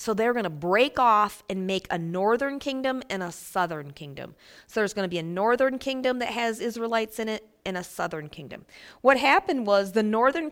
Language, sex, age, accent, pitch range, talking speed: English, female, 40-59, American, 180-235 Hz, 210 wpm